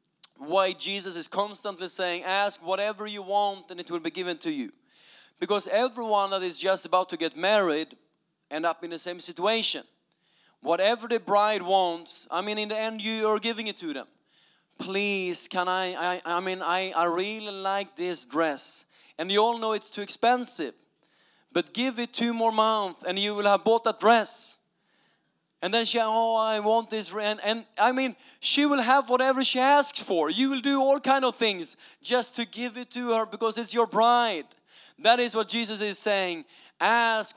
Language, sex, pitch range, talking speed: English, male, 190-235 Hz, 195 wpm